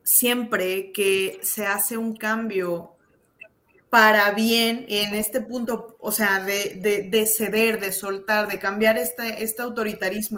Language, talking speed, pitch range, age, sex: Spanish, 140 wpm, 200-250 Hz, 20-39, female